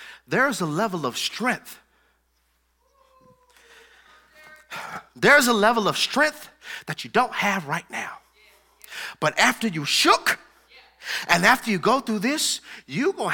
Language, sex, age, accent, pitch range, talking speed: English, male, 30-49, American, 185-265 Hz, 125 wpm